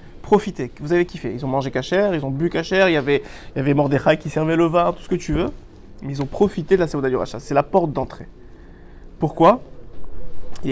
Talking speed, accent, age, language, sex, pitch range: 230 wpm, French, 30-49, French, male, 135-180 Hz